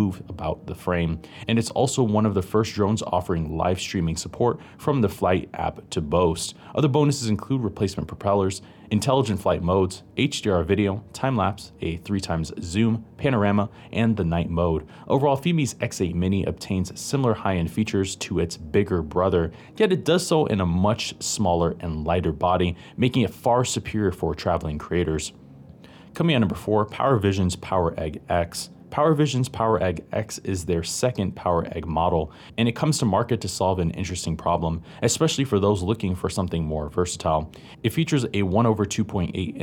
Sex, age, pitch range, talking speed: male, 20-39, 85-115 Hz, 170 wpm